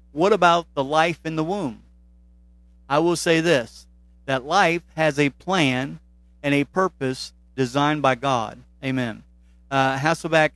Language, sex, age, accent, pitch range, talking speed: English, male, 50-69, American, 120-165 Hz, 140 wpm